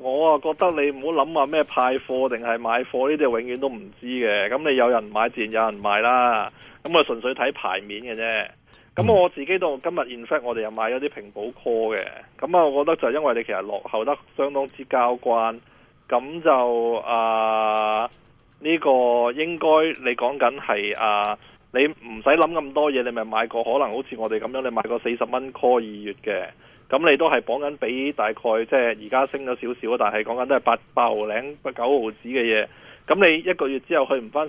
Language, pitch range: Chinese, 115-140 Hz